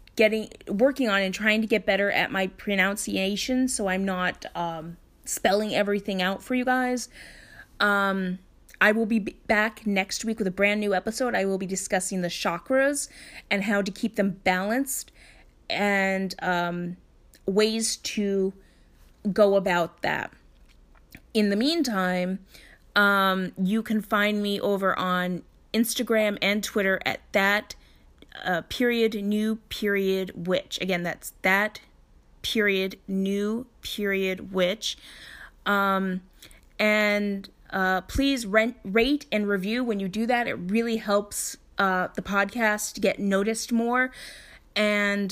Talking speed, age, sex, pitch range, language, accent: 135 wpm, 30-49, female, 190-220 Hz, English, American